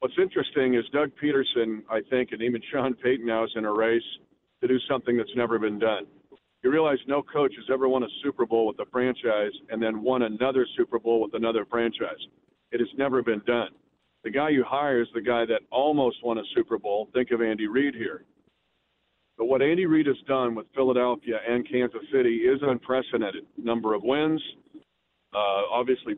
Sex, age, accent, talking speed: male, 50-69, American, 195 wpm